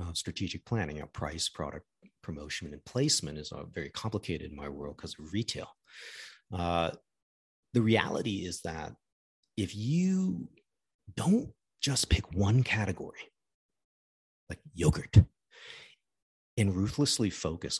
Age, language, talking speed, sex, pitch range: 40-59, English, 120 wpm, male, 90-130 Hz